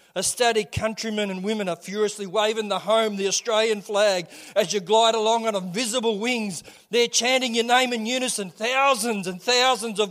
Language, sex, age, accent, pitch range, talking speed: English, male, 40-59, Australian, 185-230 Hz, 170 wpm